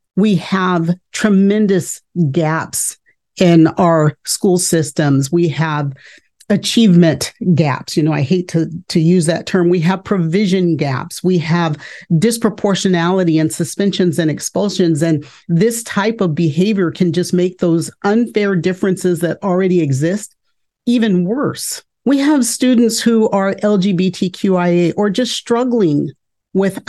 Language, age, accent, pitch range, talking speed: English, 40-59, American, 175-225 Hz, 130 wpm